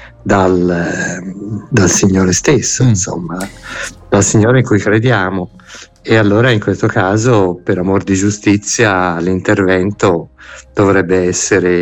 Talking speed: 110 wpm